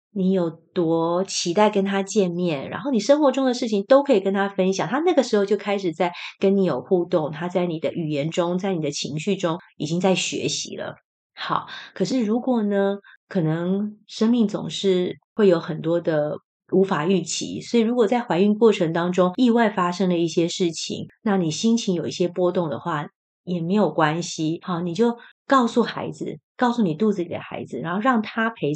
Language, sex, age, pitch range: Chinese, female, 30-49, 170-215 Hz